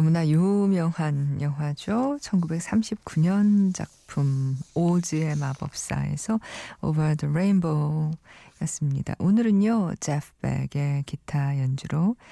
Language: Korean